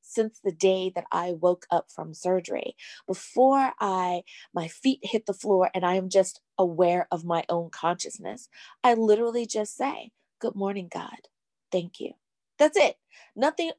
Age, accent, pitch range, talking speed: 20-39, American, 180-235 Hz, 160 wpm